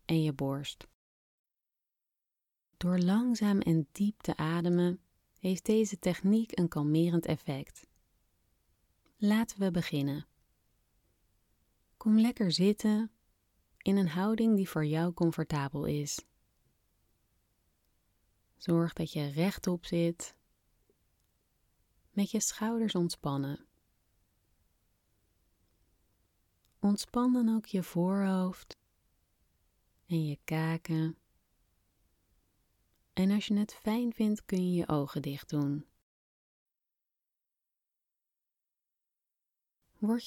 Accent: Dutch